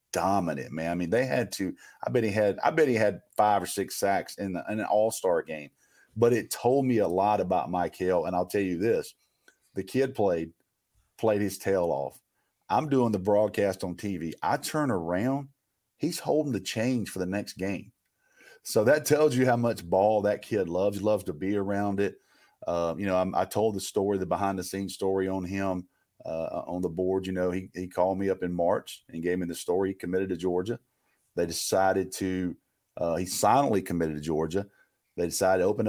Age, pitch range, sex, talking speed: 40-59, 90-110 Hz, male, 215 wpm